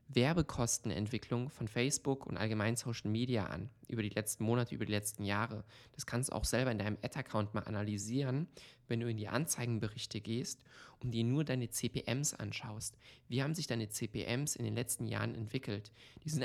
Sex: male